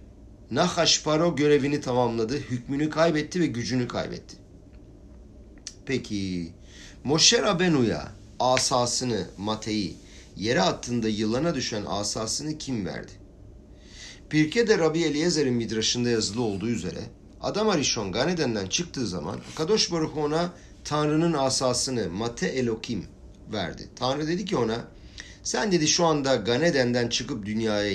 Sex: male